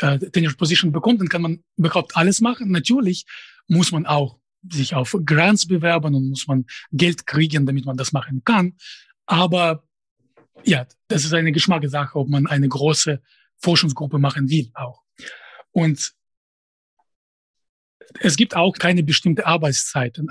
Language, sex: German, male